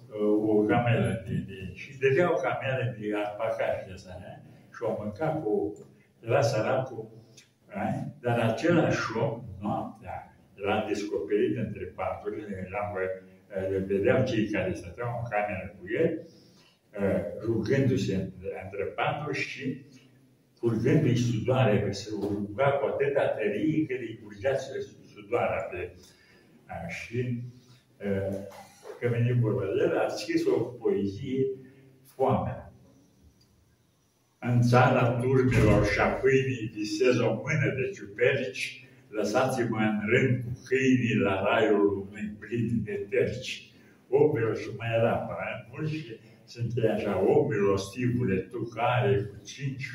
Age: 60-79